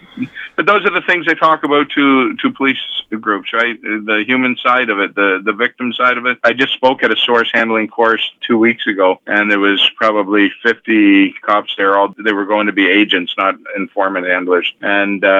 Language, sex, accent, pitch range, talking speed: English, male, American, 100-120 Hz, 205 wpm